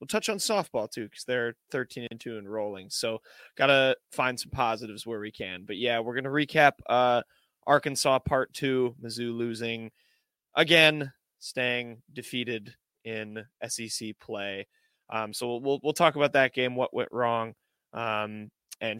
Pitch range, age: 115-140 Hz, 20-39